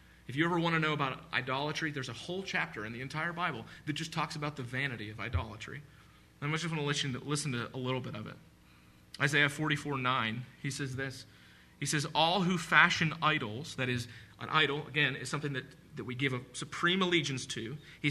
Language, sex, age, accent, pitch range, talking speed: English, male, 40-59, American, 110-160 Hz, 210 wpm